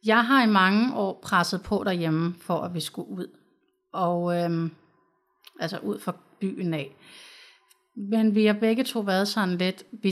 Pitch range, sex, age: 180-215 Hz, female, 30-49